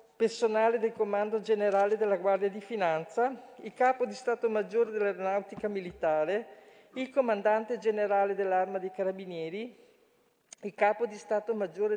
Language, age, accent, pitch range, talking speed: Italian, 50-69, native, 200-235 Hz, 130 wpm